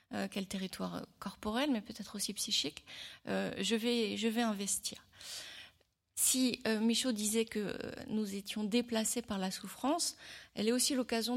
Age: 30-49